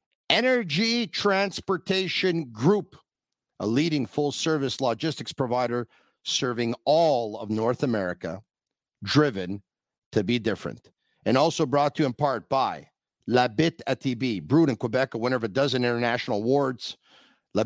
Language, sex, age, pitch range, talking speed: English, male, 50-69, 115-150 Hz, 135 wpm